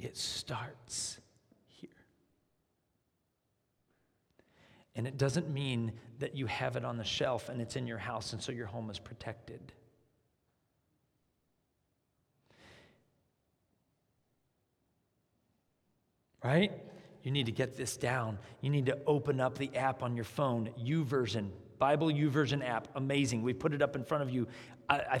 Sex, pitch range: male, 125-170 Hz